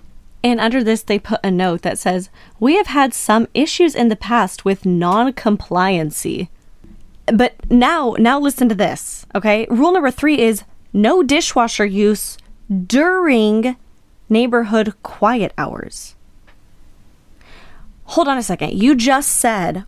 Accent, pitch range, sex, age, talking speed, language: American, 190-245 Hz, female, 20-39, 135 wpm, English